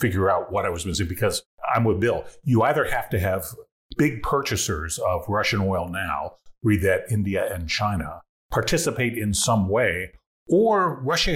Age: 40-59